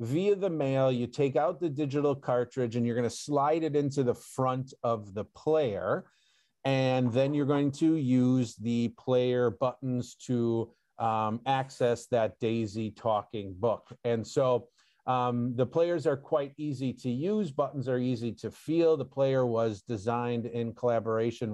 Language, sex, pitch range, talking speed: English, male, 115-145 Hz, 160 wpm